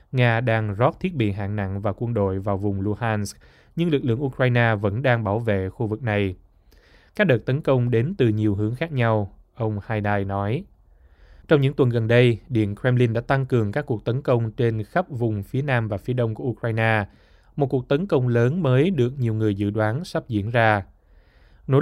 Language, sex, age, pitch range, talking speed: Vietnamese, male, 20-39, 105-130 Hz, 210 wpm